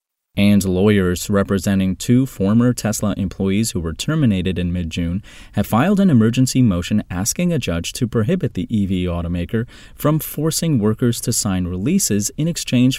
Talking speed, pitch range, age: 150 wpm, 90-125 Hz, 30-49